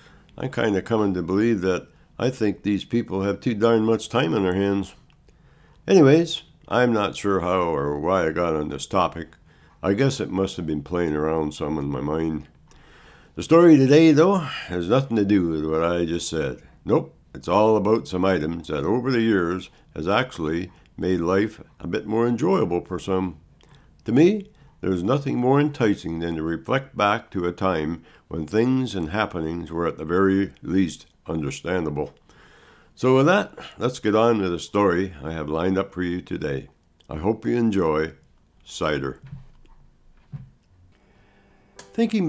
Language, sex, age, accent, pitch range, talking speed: English, male, 60-79, American, 80-115 Hz, 170 wpm